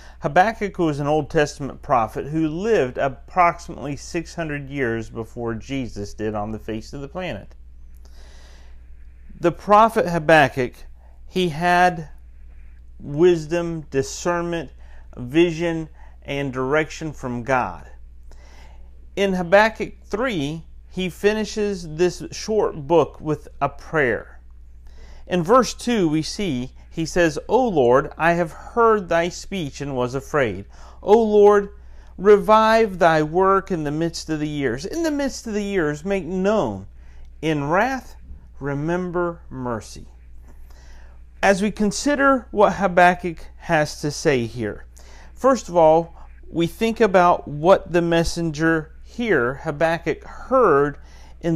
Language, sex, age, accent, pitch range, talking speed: English, male, 40-59, American, 110-180 Hz, 120 wpm